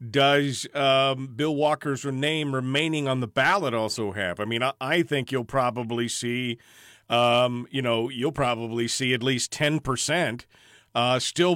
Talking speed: 155 wpm